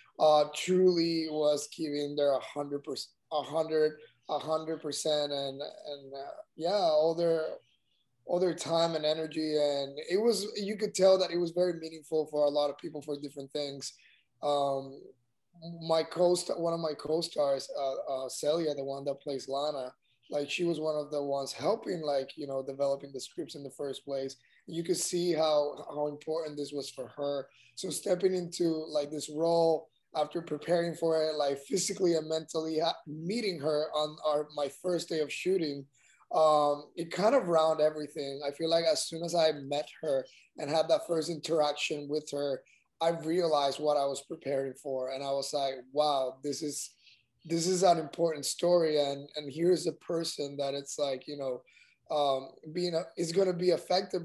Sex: male